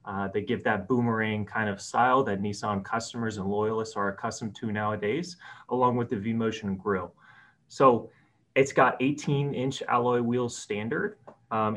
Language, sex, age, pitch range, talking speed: English, male, 30-49, 110-135 Hz, 155 wpm